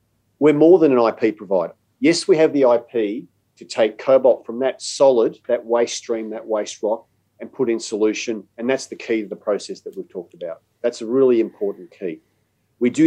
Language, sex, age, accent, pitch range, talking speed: English, male, 40-59, Australian, 105-130 Hz, 205 wpm